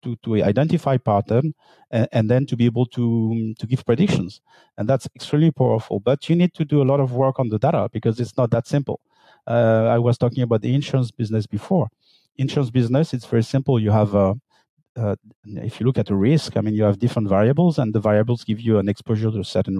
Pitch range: 110-135 Hz